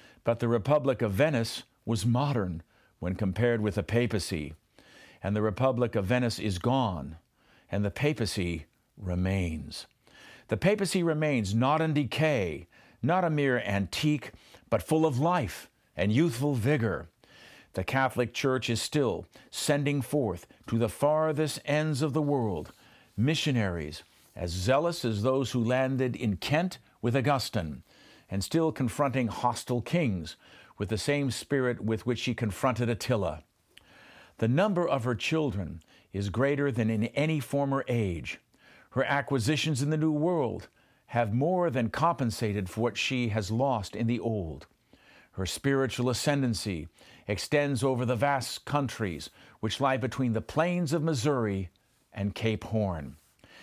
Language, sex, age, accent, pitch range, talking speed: English, male, 50-69, American, 105-145 Hz, 140 wpm